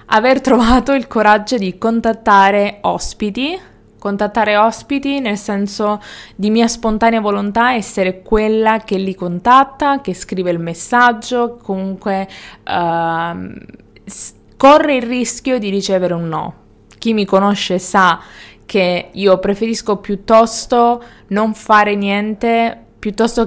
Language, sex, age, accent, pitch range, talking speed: Italian, female, 20-39, native, 185-230 Hz, 110 wpm